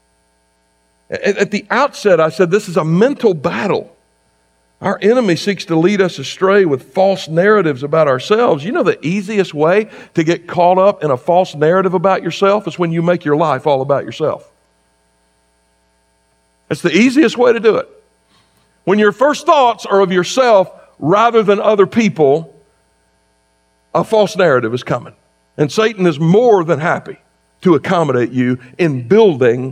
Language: English